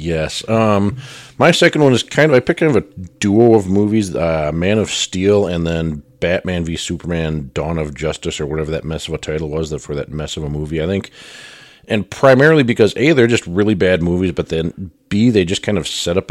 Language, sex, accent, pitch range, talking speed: English, male, American, 75-95 Hz, 230 wpm